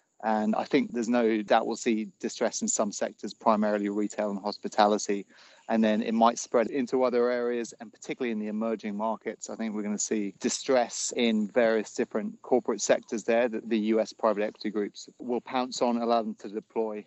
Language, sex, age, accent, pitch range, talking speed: English, male, 30-49, British, 105-115 Hz, 195 wpm